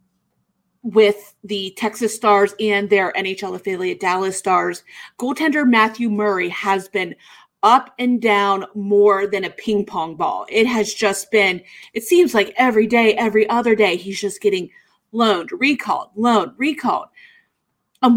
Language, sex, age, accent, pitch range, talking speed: English, female, 30-49, American, 195-235 Hz, 145 wpm